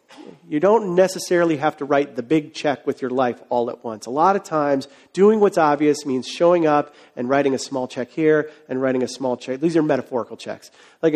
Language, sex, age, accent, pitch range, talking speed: English, male, 40-59, American, 135-185 Hz, 220 wpm